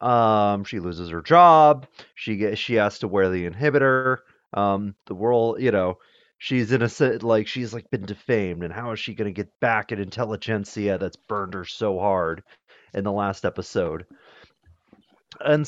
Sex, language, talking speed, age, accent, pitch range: male, English, 170 wpm, 30-49, American, 105-155 Hz